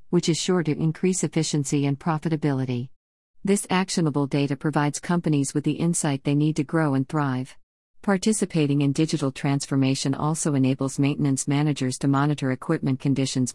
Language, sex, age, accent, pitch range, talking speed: English, female, 50-69, American, 135-160 Hz, 150 wpm